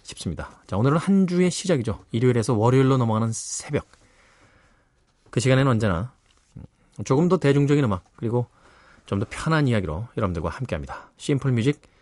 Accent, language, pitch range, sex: native, Korean, 100-140 Hz, male